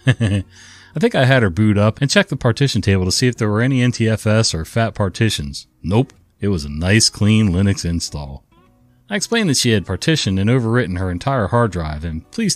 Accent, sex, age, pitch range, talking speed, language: American, male, 30-49, 90-125 Hz, 210 wpm, English